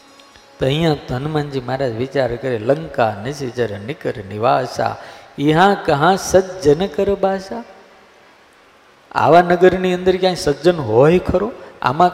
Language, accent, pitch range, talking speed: Gujarati, native, 120-170 Hz, 105 wpm